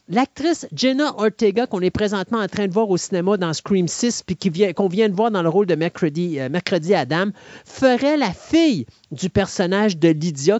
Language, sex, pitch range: French, male, 160-210 Hz